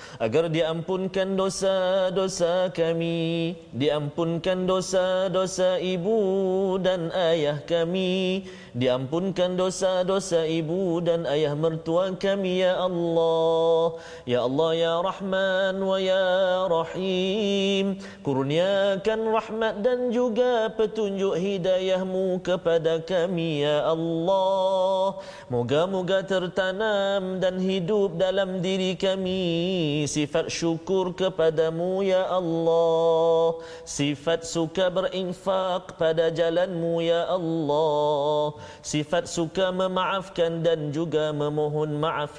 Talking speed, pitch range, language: 90 wpm, 165-190 Hz, Malayalam